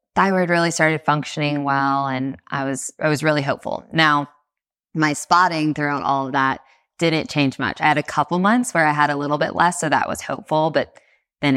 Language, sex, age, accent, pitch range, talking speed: English, female, 20-39, American, 135-155 Hz, 205 wpm